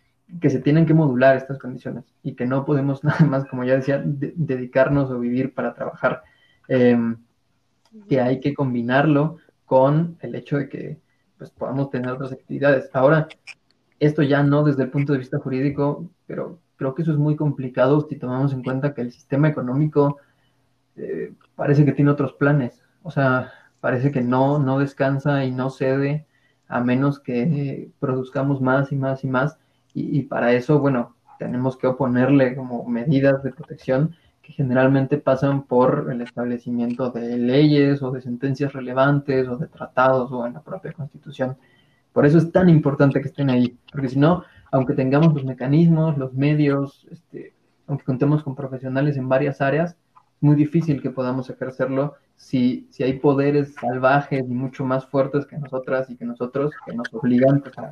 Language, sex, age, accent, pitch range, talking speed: Spanish, male, 20-39, Mexican, 130-145 Hz, 170 wpm